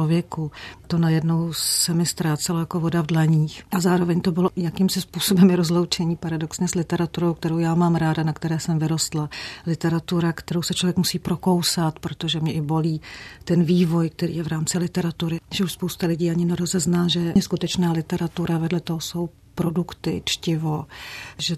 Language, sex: Czech, female